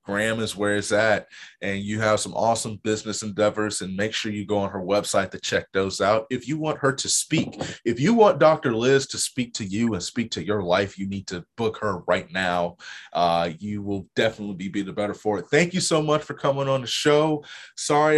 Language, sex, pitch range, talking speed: English, male, 105-130 Hz, 235 wpm